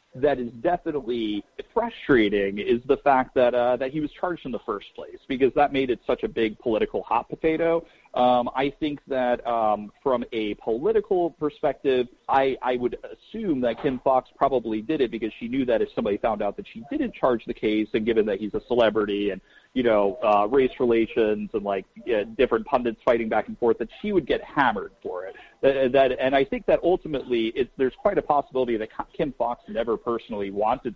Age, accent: 40-59, American